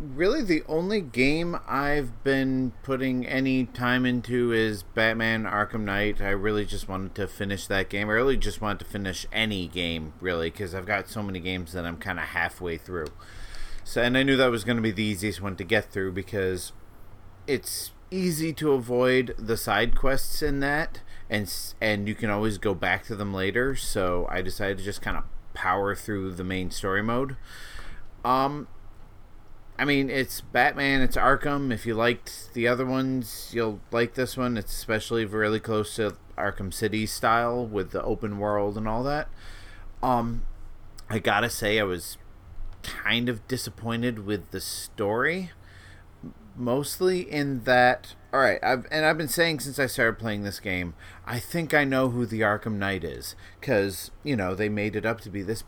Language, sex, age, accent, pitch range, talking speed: English, male, 30-49, American, 100-125 Hz, 185 wpm